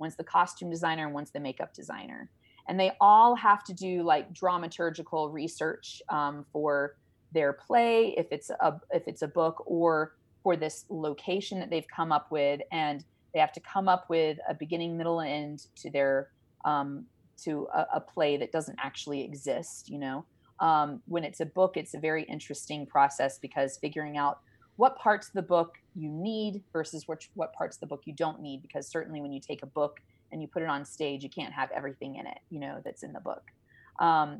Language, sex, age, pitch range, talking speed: English, female, 30-49, 145-170 Hz, 210 wpm